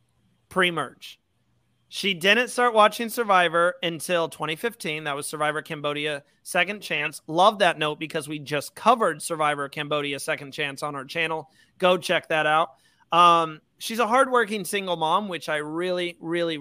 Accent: American